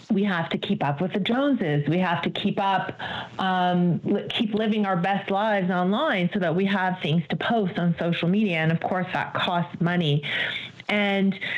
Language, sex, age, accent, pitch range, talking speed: English, female, 40-59, American, 175-210 Hz, 190 wpm